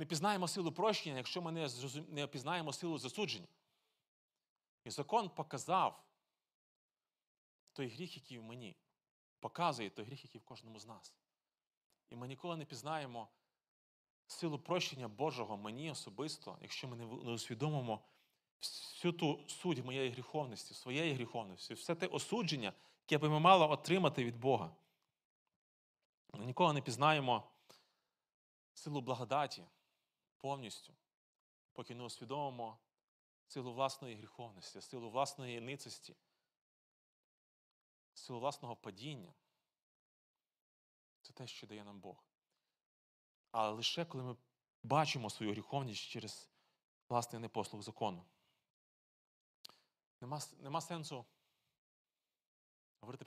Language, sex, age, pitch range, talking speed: Ukrainian, male, 30-49, 110-150 Hz, 110 wpm